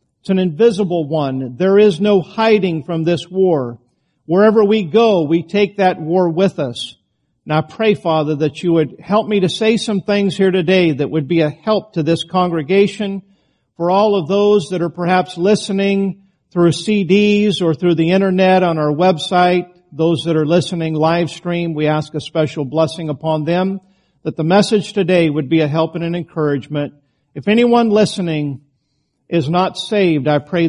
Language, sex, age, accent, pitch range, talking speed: English, male, 50-69, American, 155-195 Hz, 175 wpm